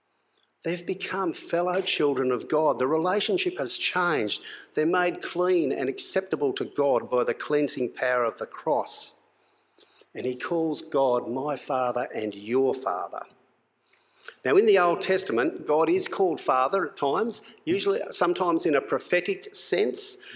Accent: Australian